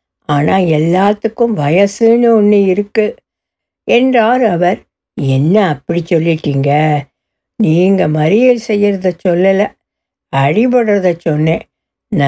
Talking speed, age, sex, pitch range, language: 80 wpm, 60-79, female, 175-230 Hz, Tamil